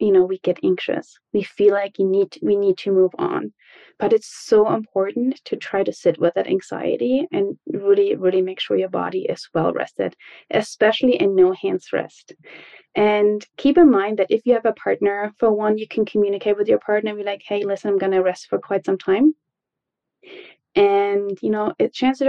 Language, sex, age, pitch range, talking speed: English, female, 30-49, 200-315 Hz, 205 wpm